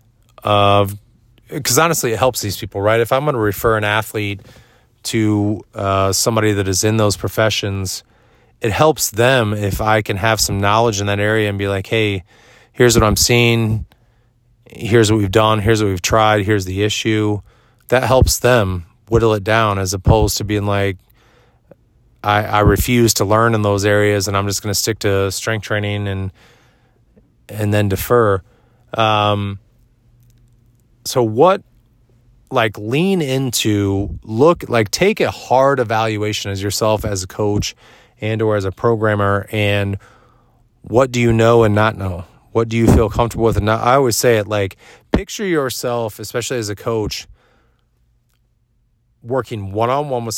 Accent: American